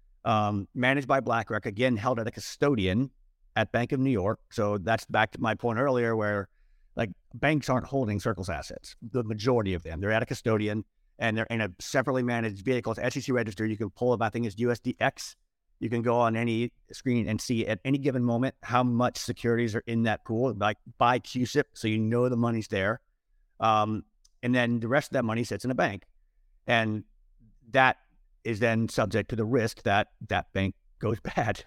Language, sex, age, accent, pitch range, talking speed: English, male, 50-69, American, 105-125 Hz, 205 wpm